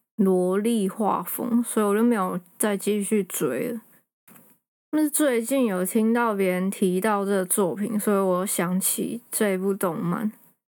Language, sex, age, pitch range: Chinese, female, 20-39, 195-240 Hz